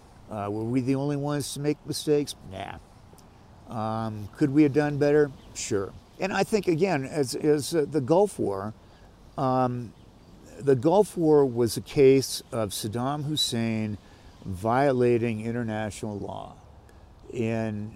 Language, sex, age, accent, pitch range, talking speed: English, male, 50-69, American, 105-125 Hz, 135 wpm